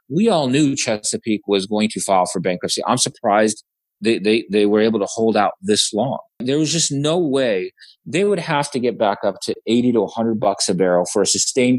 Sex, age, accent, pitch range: male, 30-49, American, 110-150 Hz